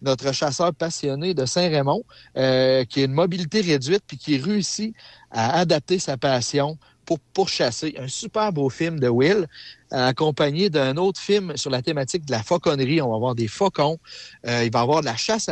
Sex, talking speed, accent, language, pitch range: male, 190 wpm, Canadian, French, 130-170 Hz